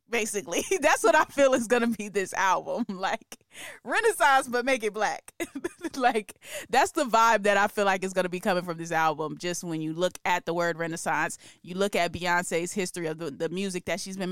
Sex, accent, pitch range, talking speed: female, American, 165-200 Hz, 220 wpm